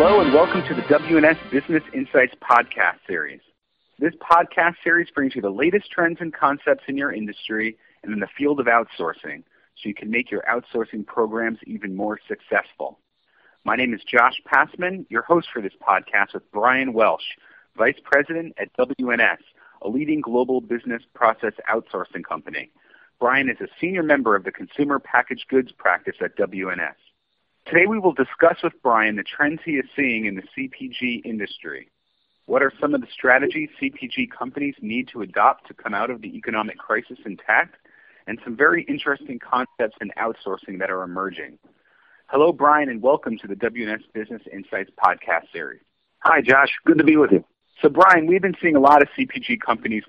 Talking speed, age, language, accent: 175 wpm, 40-59, English, American